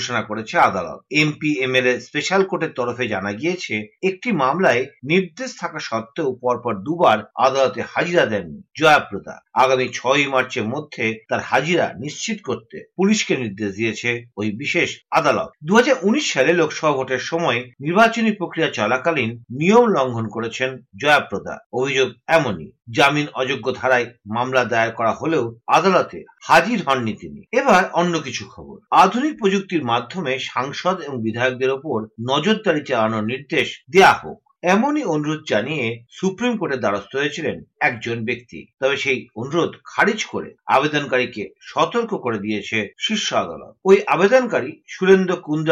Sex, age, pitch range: male, 50-69, 125-185 Hz